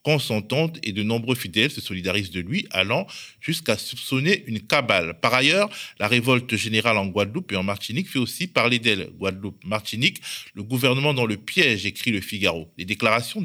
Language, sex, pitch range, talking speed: French, male, 105-130 Hz, 175 wpm